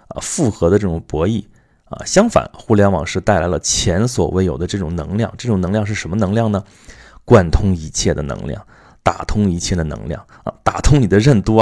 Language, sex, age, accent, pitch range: Chinese, male, 30-49, native, 85-105 Hz